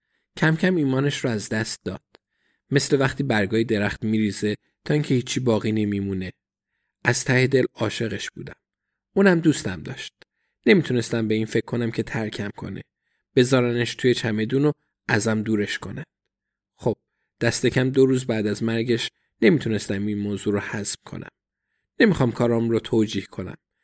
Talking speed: 145 wpm